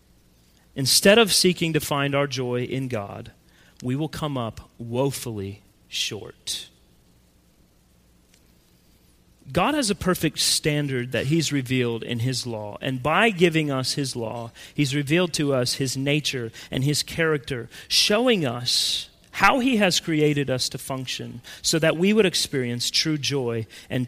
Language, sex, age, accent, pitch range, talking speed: English, male, 40-59, American, 125-190 Hz, 145 wpm